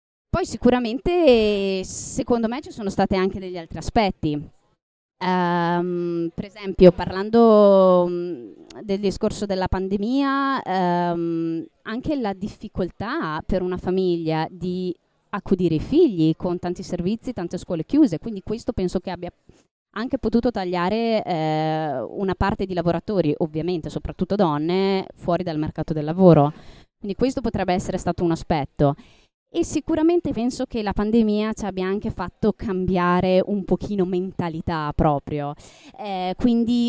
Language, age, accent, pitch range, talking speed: Italian, 20-39, native, 175-220 Hz, 135 wpm